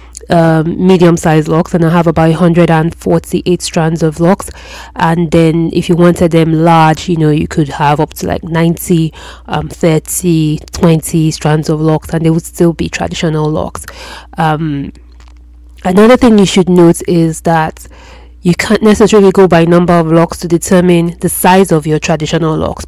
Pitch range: 155-180 Hz